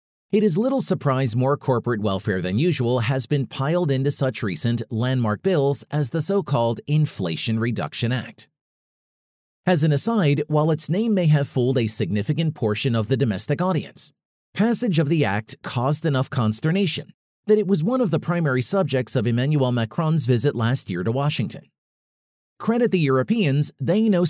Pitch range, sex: 120-165 Hz, male